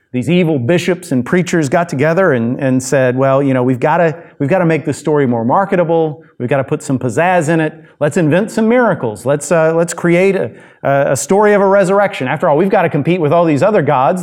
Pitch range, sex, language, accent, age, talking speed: 135-180 Hz, male, English, American, 40-59, 230 wpm